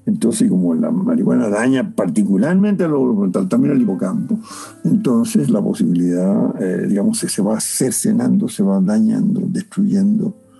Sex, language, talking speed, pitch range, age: male, Spanish, 130 wpm, 185-230 Hz, 60-79